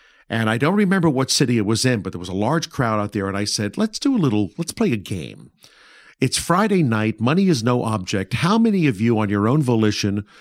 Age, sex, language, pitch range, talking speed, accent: 50-69, male, English, 105-145 Hz, 250 wpm, American